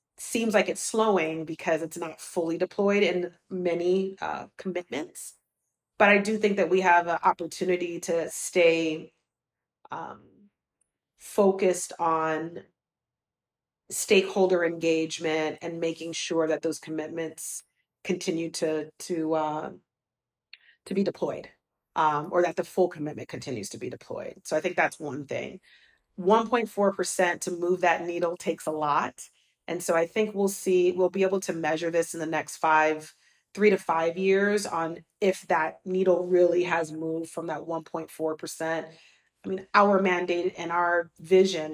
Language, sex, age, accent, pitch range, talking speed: English, female, 40-59, American, 160-185 Hz, 150 wpm